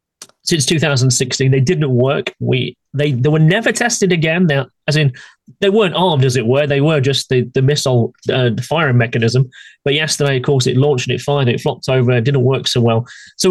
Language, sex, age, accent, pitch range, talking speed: English, male, 30-49, British, 130-170 Hz, 220 wpm